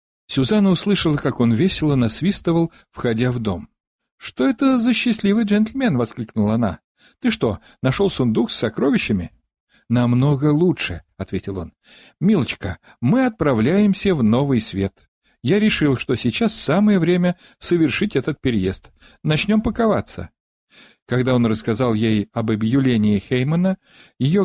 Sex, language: male, Russian